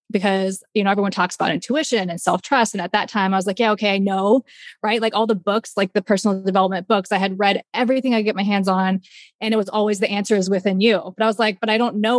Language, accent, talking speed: English, American, 280 wpm